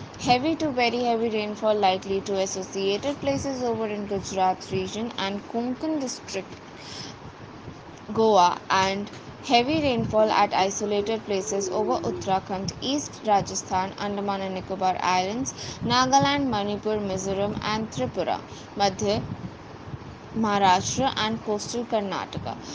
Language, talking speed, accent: English, 110 wpm, Indian